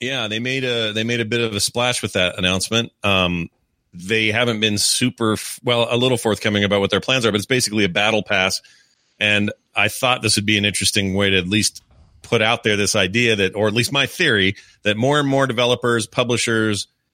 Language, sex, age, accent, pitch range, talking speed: English, male, 30-49, American, 100-125 Hz, 225 wpm